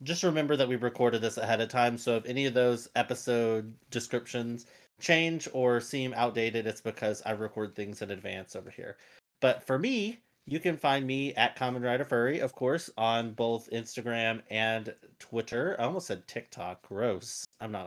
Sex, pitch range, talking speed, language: male, 110-130 Hz, 180 wpm, English